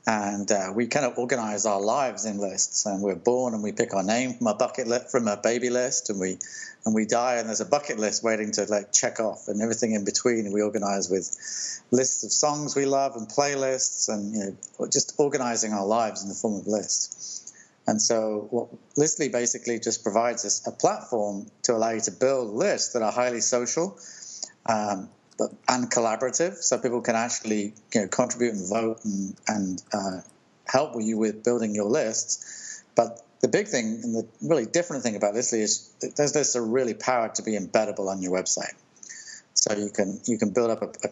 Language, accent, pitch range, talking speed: English, British, 105-125 Hz, 210 wpm